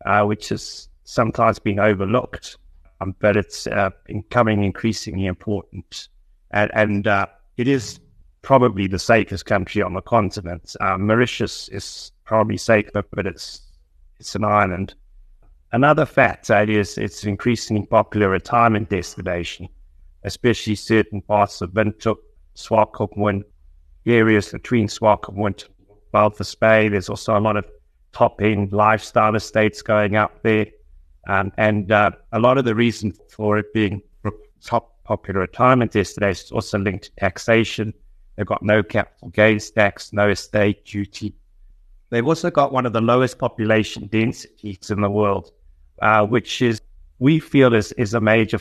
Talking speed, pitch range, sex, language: 145 wpm, 95-110 Hz, male, English